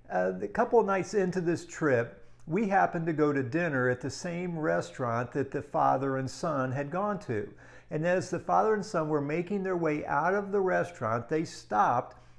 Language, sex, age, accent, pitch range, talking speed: English, male, 50-69, American, 130-175 Hz, 205 wpm